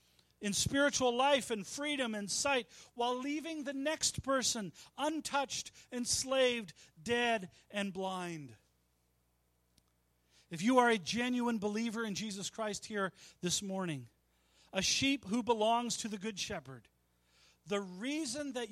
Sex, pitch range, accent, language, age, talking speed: male, 180-270 Hz, American, English, 40-59, 130 wpm